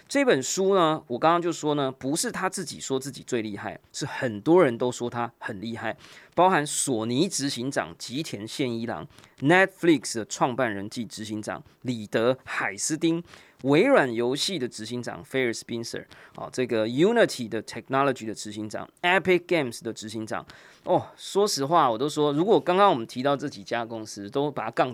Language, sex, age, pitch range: Chinese, male, 20-39, 115-165 Hz